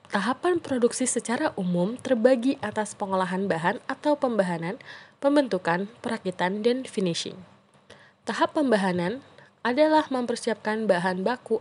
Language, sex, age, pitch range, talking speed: Indonesian, female, 20-39, 185-240 Hz, 105 wpm